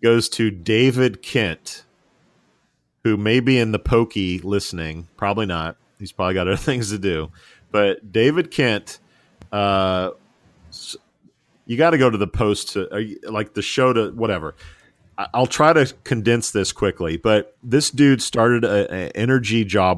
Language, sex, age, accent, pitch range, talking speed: English, male, 40-59, American, 85-115 Hz, 155 wpm